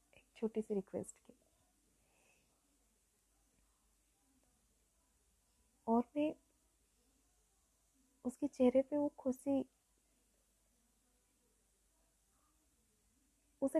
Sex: female